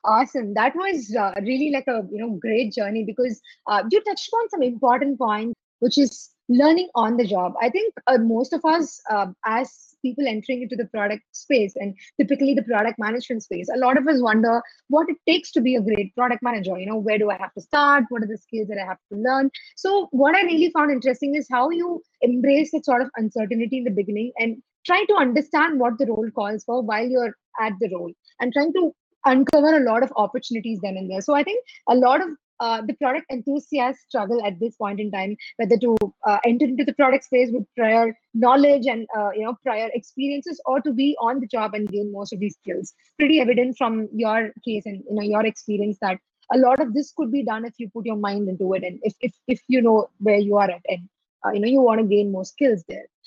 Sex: female